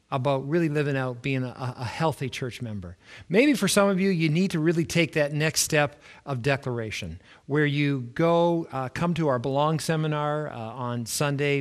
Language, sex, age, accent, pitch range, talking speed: English, male, 50-69, American, 130-160 Hz, 190 wpm